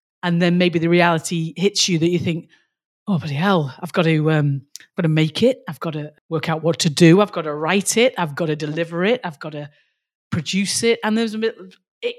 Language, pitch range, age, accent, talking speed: English, 160-195 Hz, 40-59, British, 245 wpm